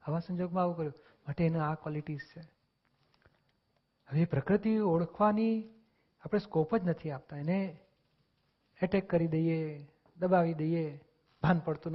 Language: Gujarati